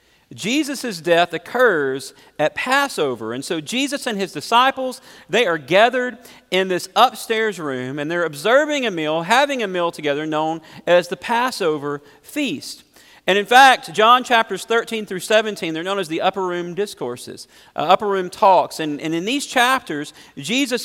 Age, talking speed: 40-59, 165 wpm